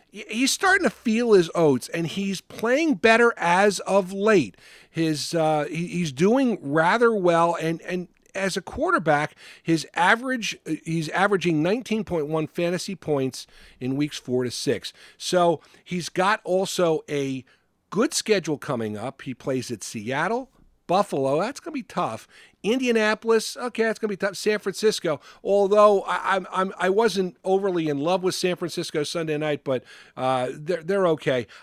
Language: English